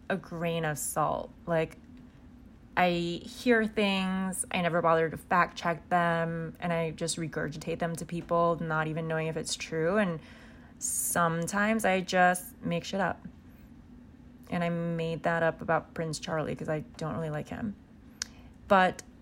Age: 20-39